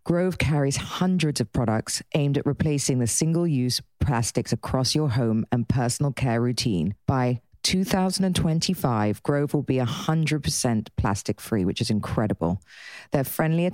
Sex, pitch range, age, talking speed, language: female, 120-150 Hz, 40-59, 130 wpm, English